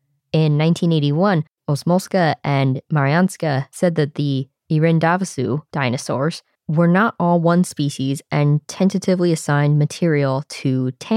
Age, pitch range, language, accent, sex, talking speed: 20-39, 140-175 Hz, English, American, female, 115 wpm